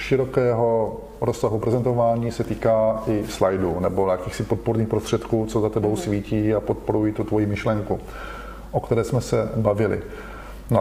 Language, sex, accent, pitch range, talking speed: Czech, male, native, 105-120 Hz, 145 wpm